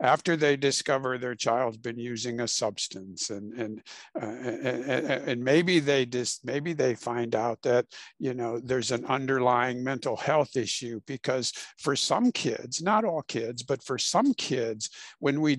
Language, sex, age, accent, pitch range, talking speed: English, male, 60-79, American, 120-145 Hz, 165 wpm